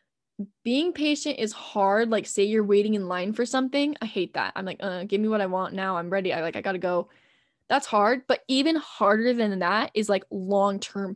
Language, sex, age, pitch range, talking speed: English, female, 10-29, 195-235 Hz, 220 wpm